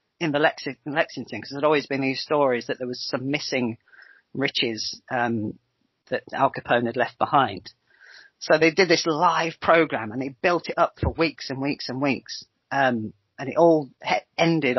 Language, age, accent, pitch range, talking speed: English, 40-59, British, 125-155 Hz, 180 wpm